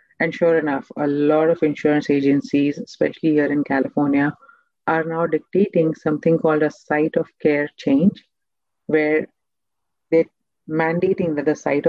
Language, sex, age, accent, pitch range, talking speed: English, female, 40-59, Indian, 150-195 Hz, 140 wpm